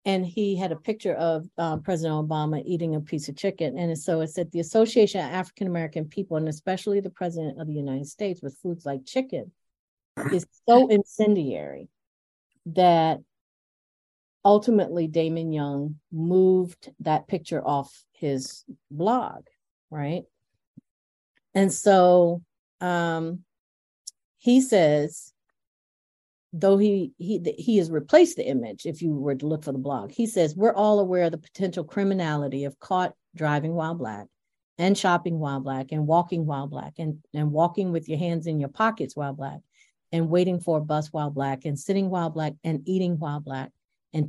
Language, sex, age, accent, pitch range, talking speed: English, female, 50-69, American, 150-185 Hz, 165 wpm